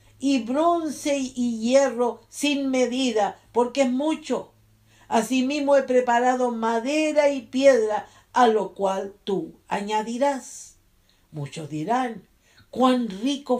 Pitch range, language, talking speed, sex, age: 185-275 Hz, English, 105 wpm, female, 50-69